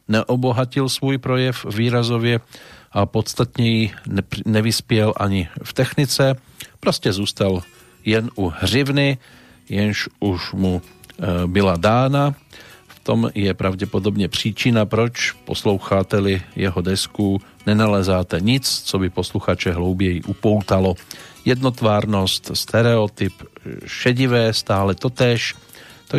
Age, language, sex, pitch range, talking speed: 40-59, Slovak, male, 95-120 Hz, 95 wpm